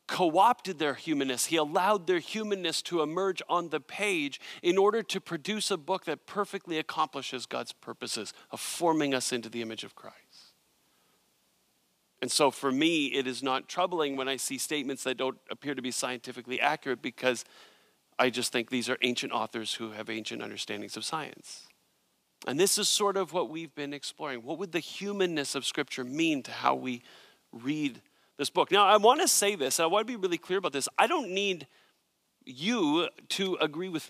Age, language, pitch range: 40-59, English, 140-210 Hz